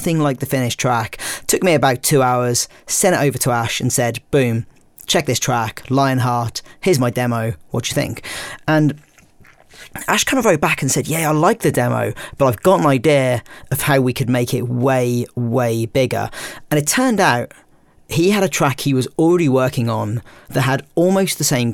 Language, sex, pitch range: English, male, 120-140 Hz